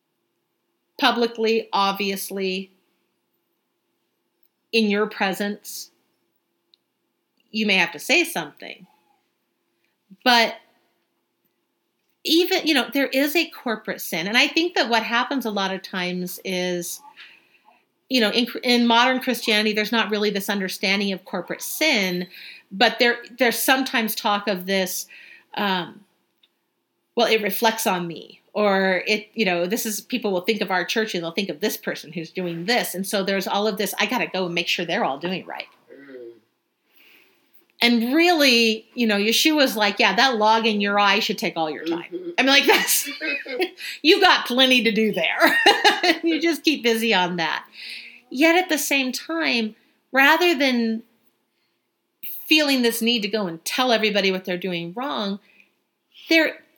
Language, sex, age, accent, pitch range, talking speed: English, female, 40-59, American, 195-270 Hz, 155 wpm